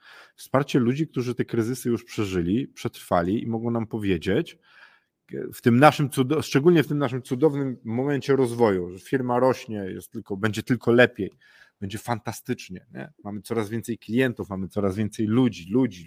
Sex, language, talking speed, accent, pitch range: male, Polish, 160 wpm, native, 100-125 Hz